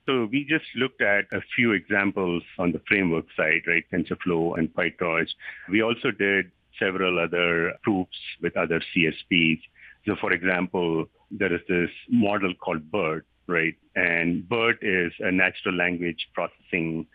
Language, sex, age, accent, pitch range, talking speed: English, male, 50-69, Indian, 80-95 Hz, 145 wpm